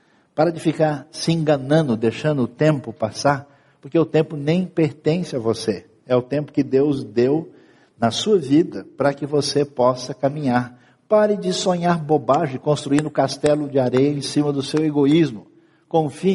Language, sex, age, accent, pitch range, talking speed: Portuguese, male, 60-79, Brazilian, 125-165 Hz, 160 wpm